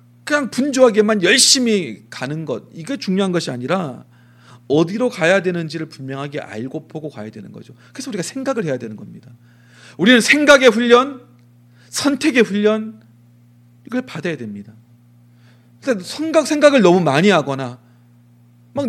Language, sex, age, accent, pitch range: Korean, male, 30-49, native, 120-195 Hz